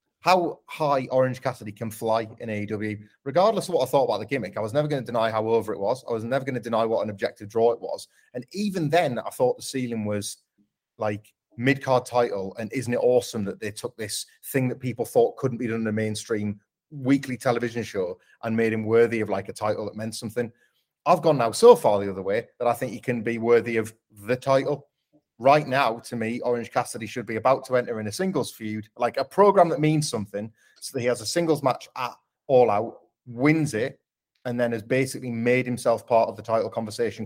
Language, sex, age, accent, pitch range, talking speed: English, male, 30-49, British, 110-135 Hz, 230 wpm